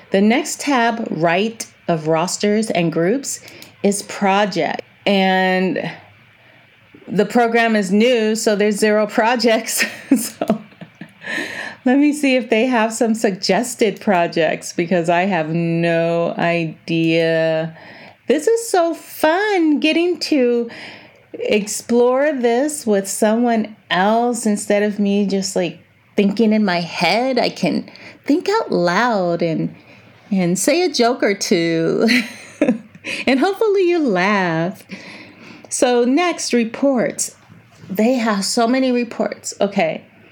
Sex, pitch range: female, 185-245 Hz